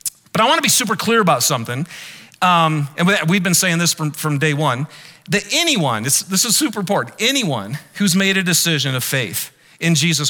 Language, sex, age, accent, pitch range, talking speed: English, male, 40-59, American, 155-215 Hz, 200 wpm